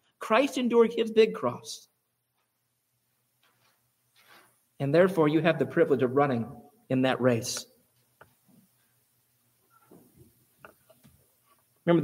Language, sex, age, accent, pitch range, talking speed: English, male, 30-49, American, 130-180 Hz, 85 wpm